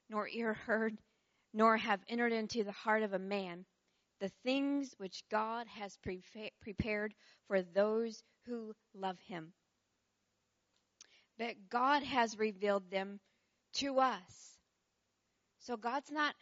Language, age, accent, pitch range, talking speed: English, 40-59, American, 210-265 Hz, 120 wpm